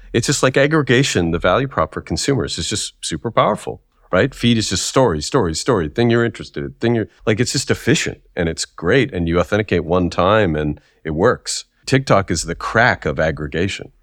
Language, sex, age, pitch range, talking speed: English, male, 40-59, 85-110 Hz, 195 wpm